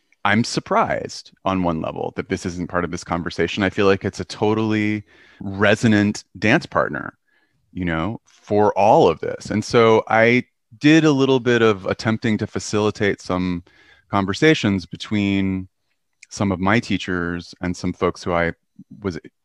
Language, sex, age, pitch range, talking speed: English, male, 30-49, 90-115 Hz, 155 wpm